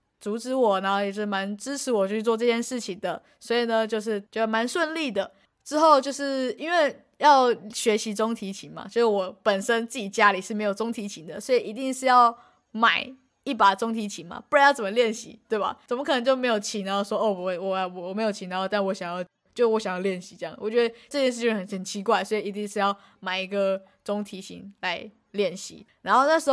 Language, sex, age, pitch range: Chinese, female, 20-39, 195-235 Hz